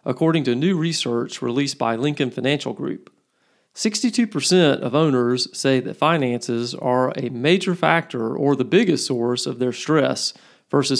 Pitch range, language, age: 120-145 Hz, English, 40-59